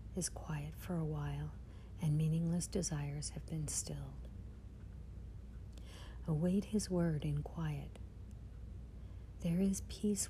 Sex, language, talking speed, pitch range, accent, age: female, English, 110 wpm, 105-175 Hz, American, 60-79